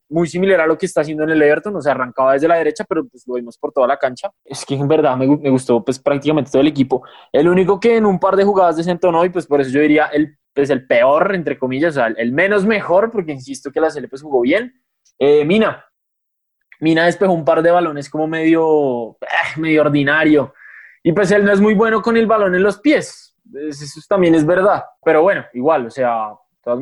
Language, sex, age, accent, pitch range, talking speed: Spanish, male, 20-39, Colombian, 130-175 Hz, 240 wpm